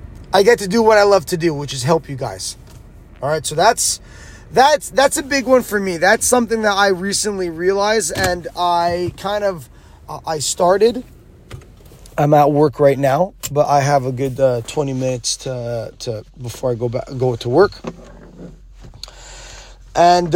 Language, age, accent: English, 20-39, American